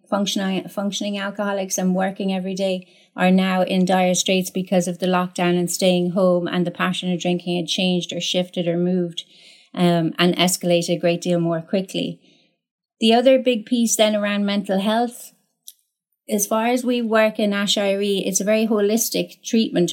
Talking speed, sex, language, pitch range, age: 175 wpm, female, English, 180-205 Hz, 30-49